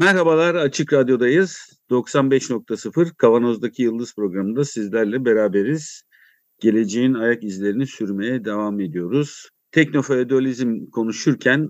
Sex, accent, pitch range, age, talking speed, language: male, native, 110-150 Hz, 50-69, 85 wpm, Turkish